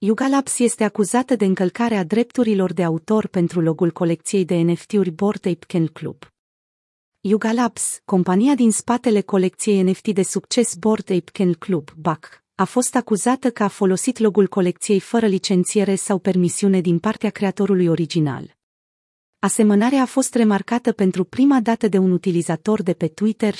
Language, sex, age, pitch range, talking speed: Romanian, female, 40-59, 175-215 Hz, 155 wpm